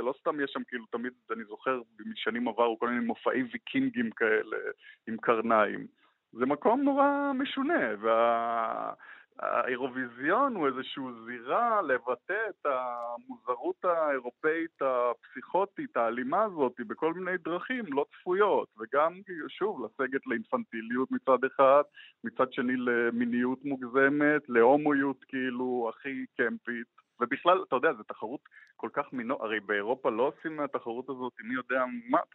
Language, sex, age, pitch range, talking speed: Hebrew, male, 20-39, 120-150 Hz, 130 wpm